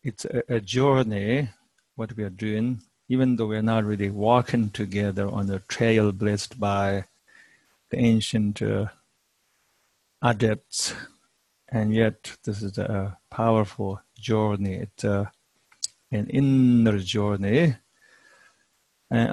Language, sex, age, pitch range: English, male, 50-69, 105-120 Hz